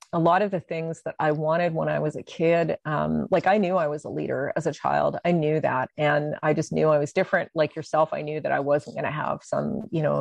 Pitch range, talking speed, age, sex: 155-185 Hz, 275 wpm, 40-59, female